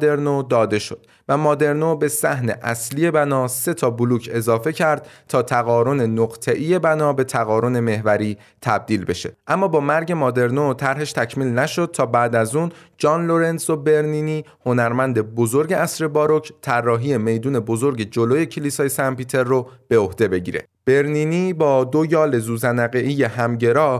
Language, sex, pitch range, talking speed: Persian, male, 115-150 Hz, 145 wpm